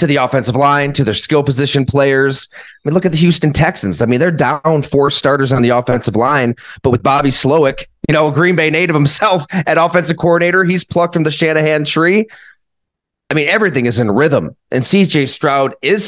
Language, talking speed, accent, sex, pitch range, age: English, 210 wpm, American, male, 135-175 Hz, 30-49